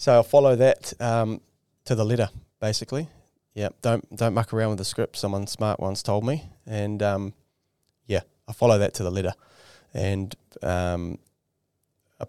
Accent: Australian